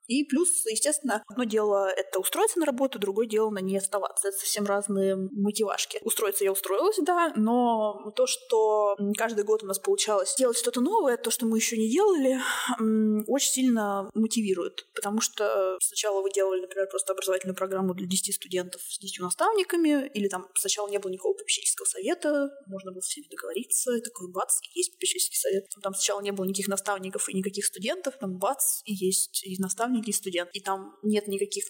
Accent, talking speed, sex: native, 180 wpm, female